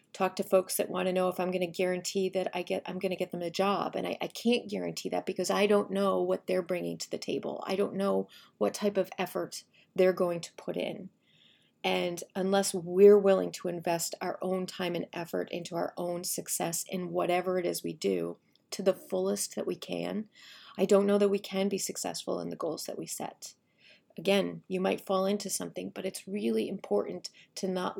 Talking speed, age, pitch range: 220 wpm, 30-49, 180-200 Hz